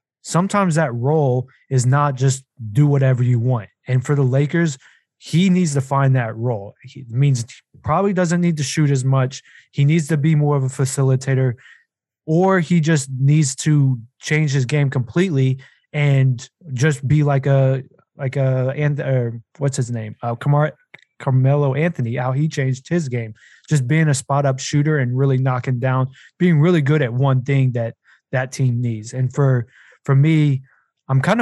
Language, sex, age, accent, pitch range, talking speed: English, male, 20-39, American, 120-145 Hz, 180 wpm